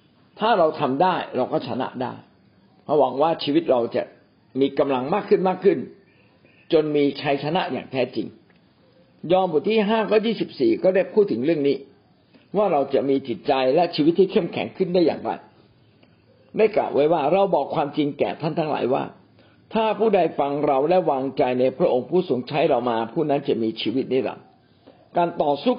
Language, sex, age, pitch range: Thai, male, 60-79, 135-190 Hz